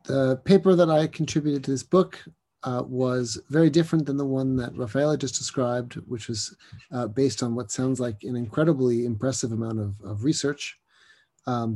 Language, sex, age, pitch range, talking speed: French, male, 30-49, 110-135 Hz, 180 wpm